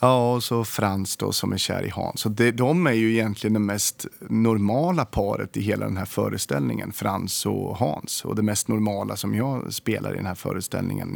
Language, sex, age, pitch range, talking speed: Swedish, male, 30-49, 100-125 Hz, 205 wpm